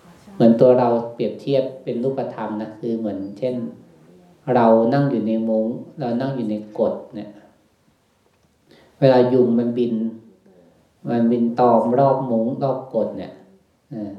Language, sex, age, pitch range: Thai, male, 20-39, 110-140 Hz